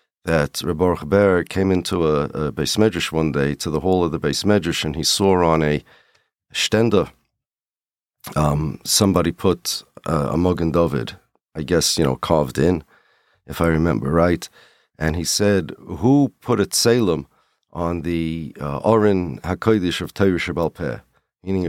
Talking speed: 155 wpm